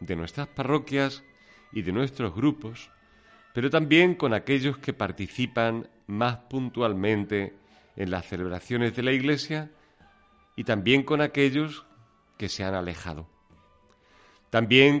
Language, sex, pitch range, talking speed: Spanish, male, 95-135 Hz, 120 wpm